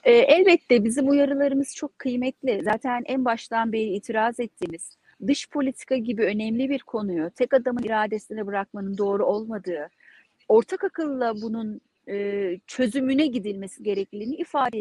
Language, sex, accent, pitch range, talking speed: Turkish, female, native, 215-275 Hz, 120 wpm